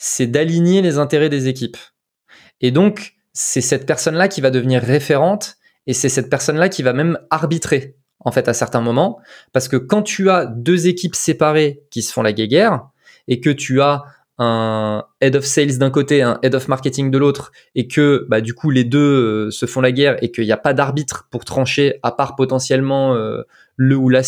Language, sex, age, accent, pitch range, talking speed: French, male, 20-39, French, 125-150 Hz, 210 wpm